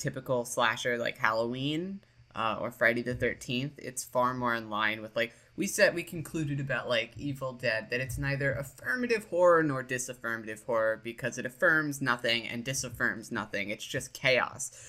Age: 20-39